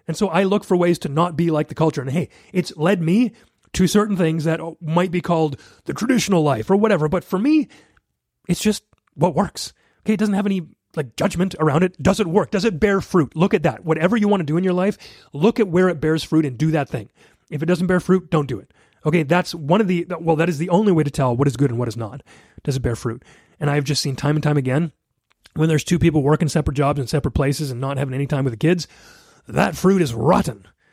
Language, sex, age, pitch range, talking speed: English, male, 30-49, 140-180 Hz, 260 wpm